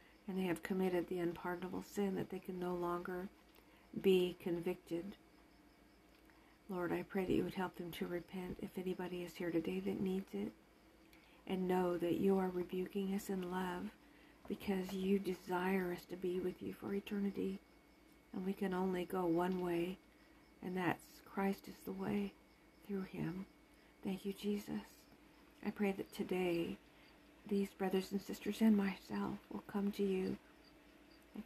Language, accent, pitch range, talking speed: English, American, 180-200 Hz, 160 wpm